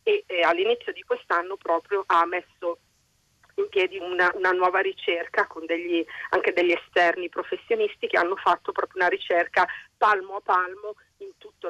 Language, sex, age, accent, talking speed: Italian, female, 40-59, native, 155 wpm